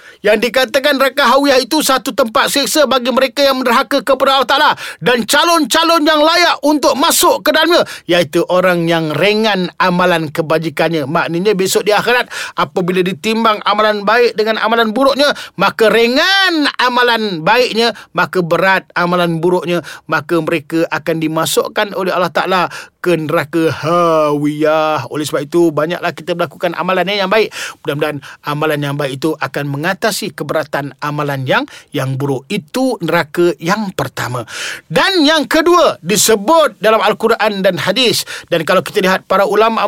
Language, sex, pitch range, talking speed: Malay, male, 175-250 Hz, 145 wpm